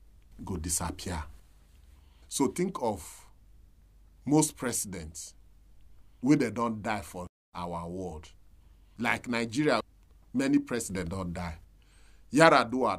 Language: English